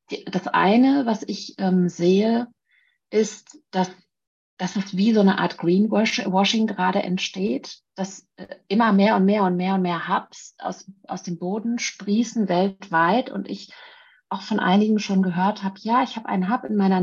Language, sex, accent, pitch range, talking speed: German, female, German, 185-220 Hz, 175 wpm